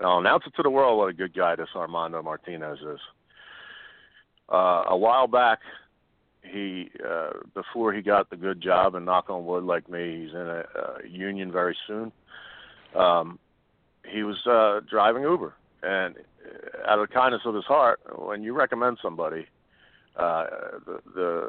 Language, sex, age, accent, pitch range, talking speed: English, male, 50-69, American, 90-125 Hz, 170 wpm